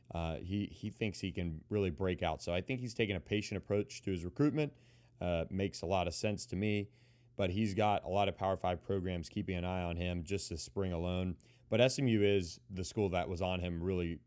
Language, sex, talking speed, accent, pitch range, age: English, male, 235 wpm, American, 90-110 Hz, 30-49